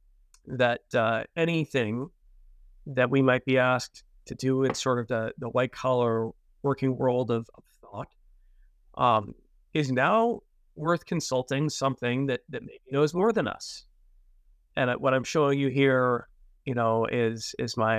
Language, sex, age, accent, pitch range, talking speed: English, male, 30-49, American, 115-145 Hz, 155 wpm